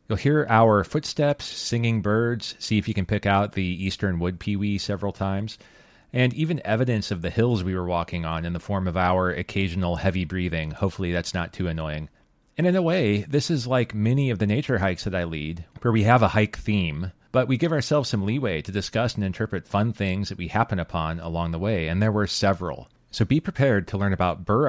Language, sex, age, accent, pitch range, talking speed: English, male, 30-49, American, 90-115 Hz, 225 wpm